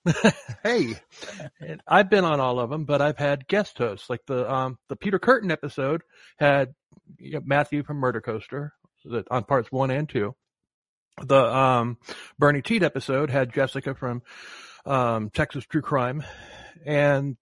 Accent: American